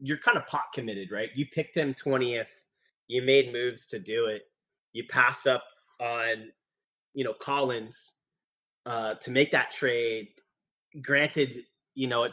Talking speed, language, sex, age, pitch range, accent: 155 wpm, English, male, 30-49, 120-145 Hz, American